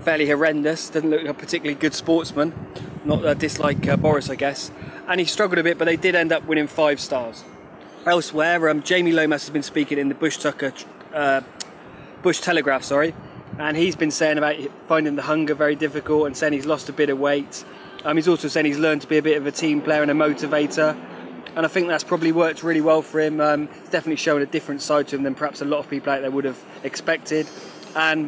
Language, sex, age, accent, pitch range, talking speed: English, male, 20-39, British, 145-165 Hz, 230 wpm